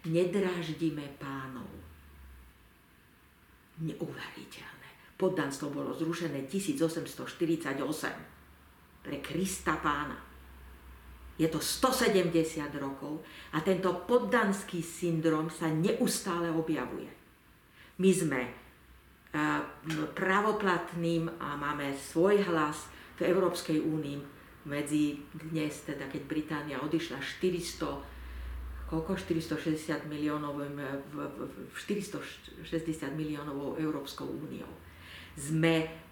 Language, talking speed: Slovak, 80 wpm